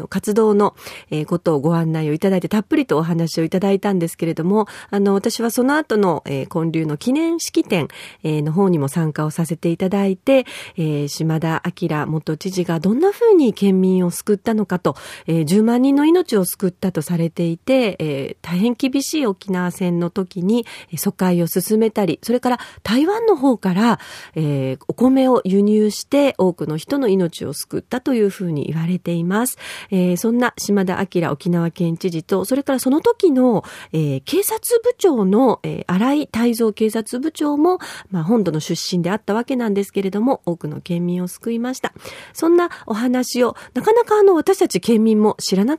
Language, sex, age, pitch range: Japanese, female, 40-59, 175-260 Hz